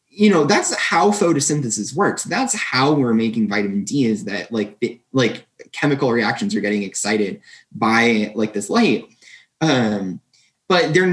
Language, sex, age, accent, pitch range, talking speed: English, male, 20-39, American, 115-150 Hz, 150 wpm